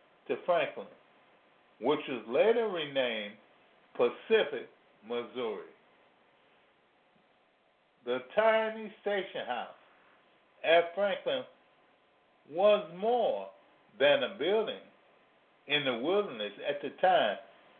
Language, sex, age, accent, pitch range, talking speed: English, male, 50-69, American, 135-210 Hz, 85 wpm